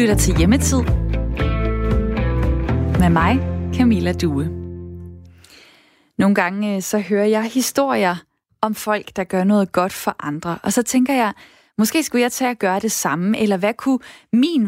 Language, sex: Danish, female